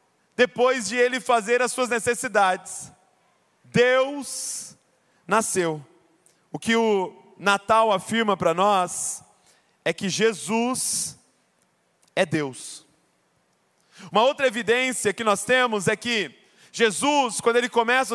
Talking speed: 110 wpm